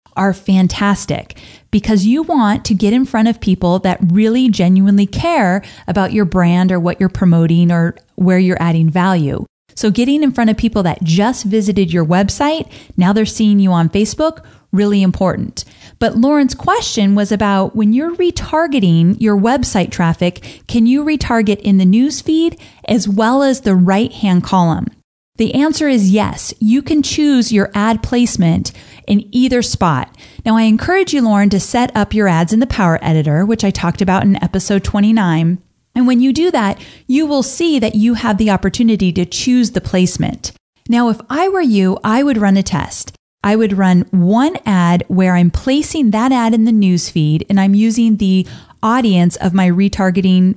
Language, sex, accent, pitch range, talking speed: English, female, American, 185-235 Hz, 180 wpm